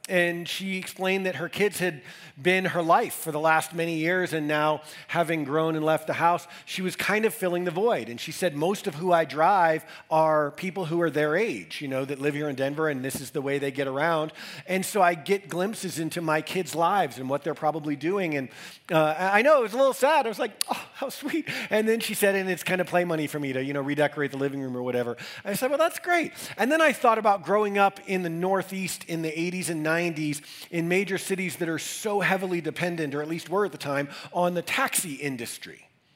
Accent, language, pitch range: American, English, 155-195 Hz